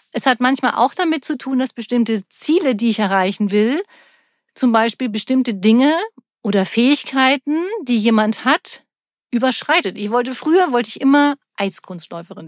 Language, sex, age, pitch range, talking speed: German, female, 50-69, 215-270 Hz, 150 wpm